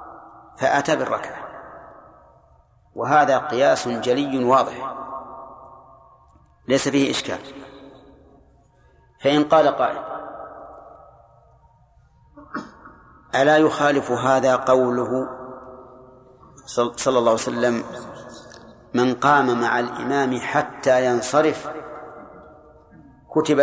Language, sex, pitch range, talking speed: Arabic, male, 125-150 Hz, 70 wpm